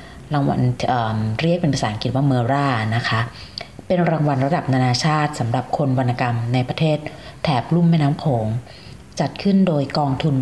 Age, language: 30-49, Thai